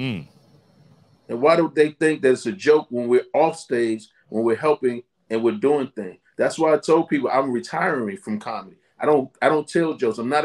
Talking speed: 210 wpm